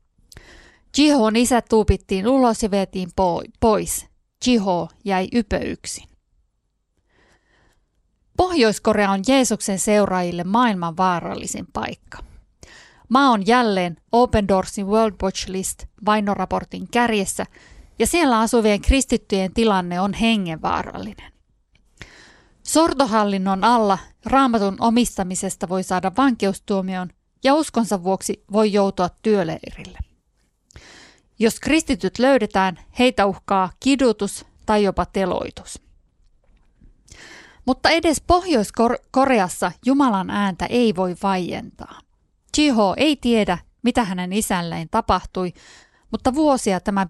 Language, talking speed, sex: Finnish, 95 wpm, female